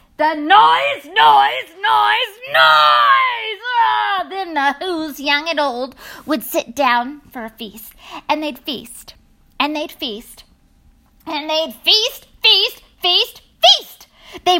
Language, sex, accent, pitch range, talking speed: English, female, American, 235-350 Hz, 125 wpm